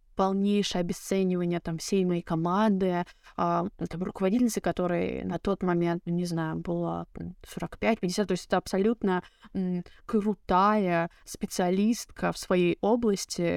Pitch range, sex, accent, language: 175-210 Hz, female, native, Russian